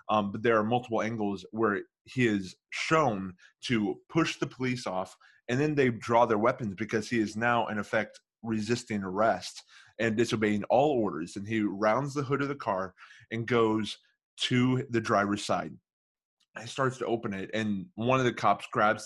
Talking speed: 185 wpm